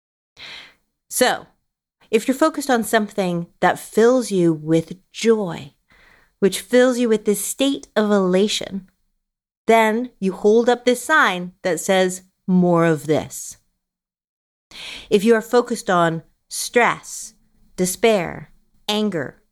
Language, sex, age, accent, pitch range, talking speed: English, female, 30-49, American, 175-225 Hz, 115 wpm